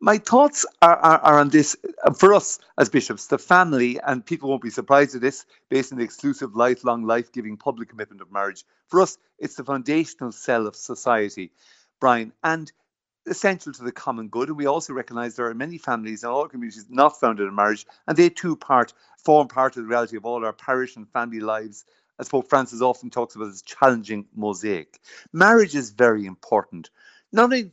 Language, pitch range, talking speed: English, 115-155 Hz, 195 wpm